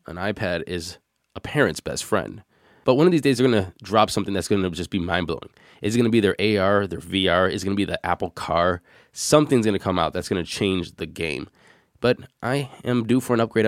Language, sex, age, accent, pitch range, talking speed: English, male, 20-39, American, 95-115 Hz, 235 wpm